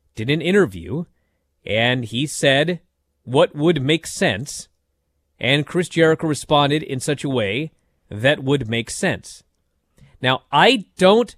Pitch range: 115-180 Hz